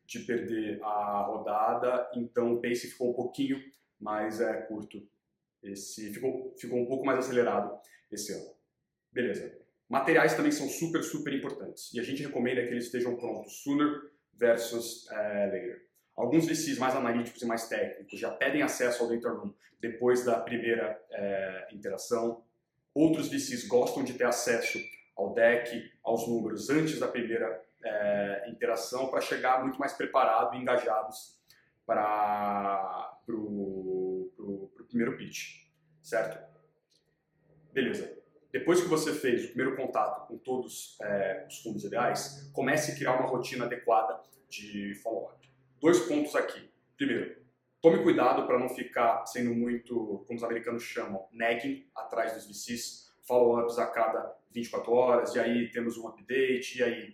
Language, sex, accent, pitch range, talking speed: Portuguese, male, Brazilian, 110-135 Hz, 145 wpm